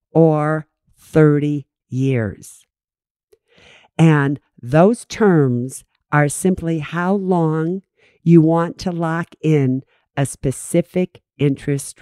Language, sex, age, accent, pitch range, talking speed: English, female, 50-69, American, 130-175 Hz, 90 wpm